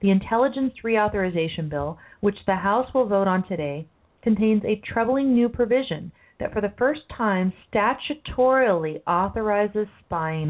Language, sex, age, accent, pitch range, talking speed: English, female, 30-49, American, 175-225 Hz, 135 wpm